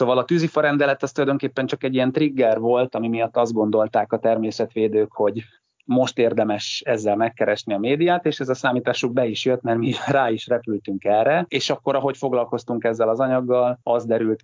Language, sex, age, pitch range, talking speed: Hungarian, male, 30-49, 110-130 Hz, 190 wpm